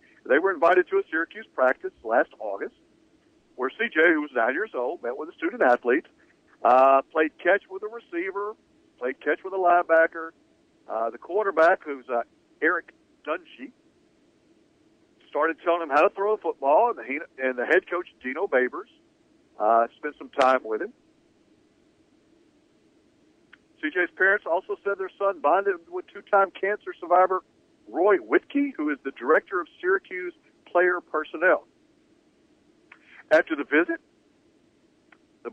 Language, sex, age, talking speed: English, male, 60-79, 140 wpm